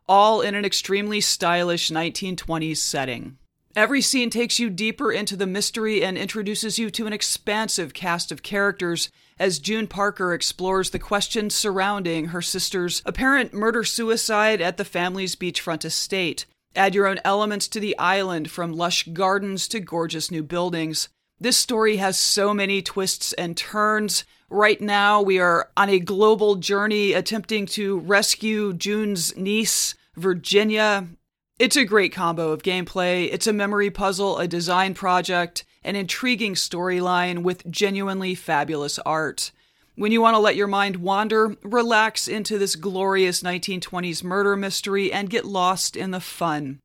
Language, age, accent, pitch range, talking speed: English, 30-49, American, 175-210 Hz, 150 wpm